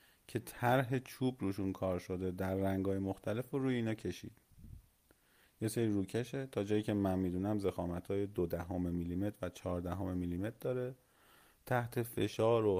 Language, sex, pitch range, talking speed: Persian, male, 90-110 Hz, 165 wpm